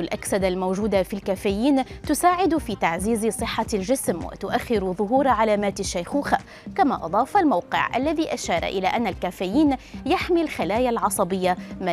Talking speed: 125 wpm